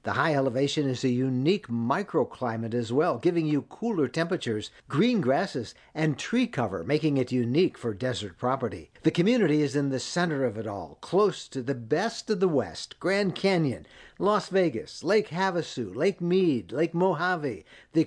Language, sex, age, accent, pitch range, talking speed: English, male, 60-79, American, 130-175 Hz, 170 wpm